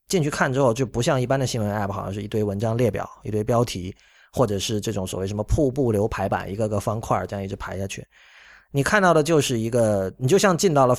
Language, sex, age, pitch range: Chinese, male, 30-49, 105-135 Hz